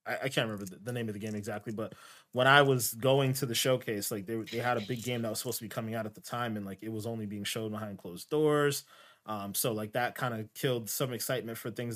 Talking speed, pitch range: 275 wpm, 110-135 Hz